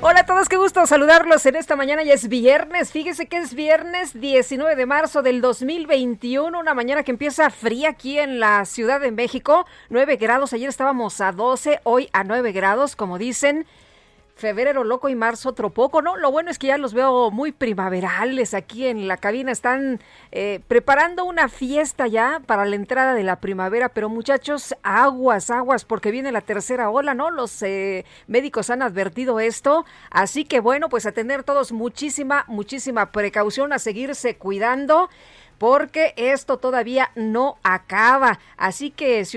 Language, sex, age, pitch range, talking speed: Spanish, female, 40-59, 230-295 Hz, 170 wpm